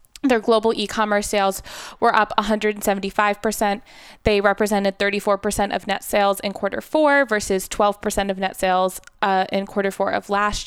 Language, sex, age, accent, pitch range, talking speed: English, female, 20-39, American, 195-215 Hz, 150 wpm